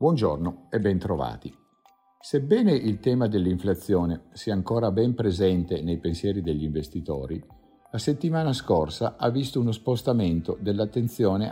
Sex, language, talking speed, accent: male, Italian, 120 wpm, native